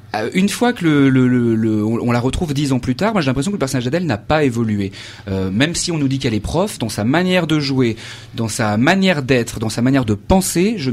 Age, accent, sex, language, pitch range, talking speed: 30-49, French, male, French, 110-150 Hz, 265 wpm